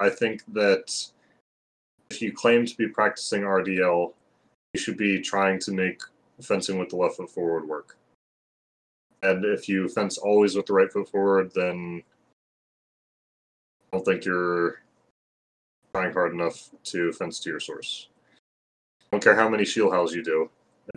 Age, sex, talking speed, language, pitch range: 20-39, male, 160 wpm, English, 90-115 Hz